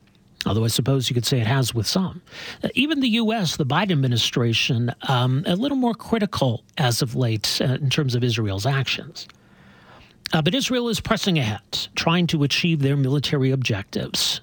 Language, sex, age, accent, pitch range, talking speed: English, male, 40-59, American, 125-175 Hz, 180 wpm